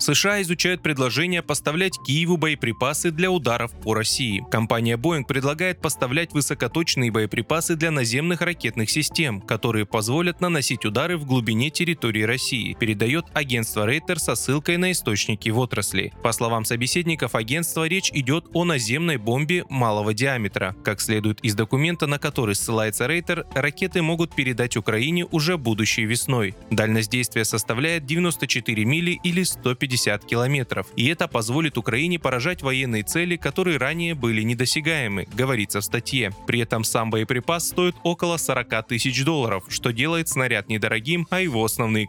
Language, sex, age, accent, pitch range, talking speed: Russian, male, 20-39, native, 110-160 Hz, 145 wpm